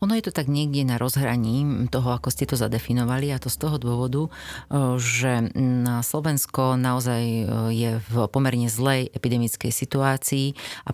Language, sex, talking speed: Slovak, female, 150 wpm